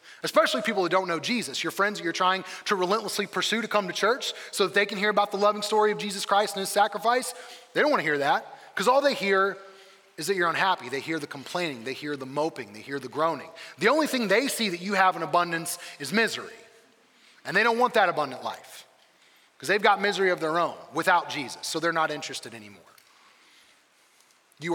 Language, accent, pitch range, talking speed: English, American, 155-200 Hz, 225 wpm